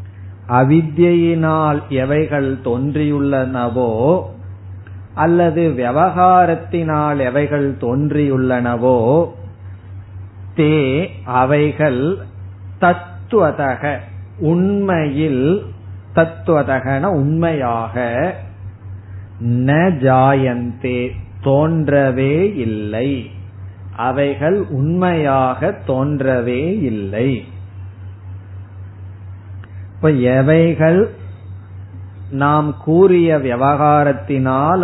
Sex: male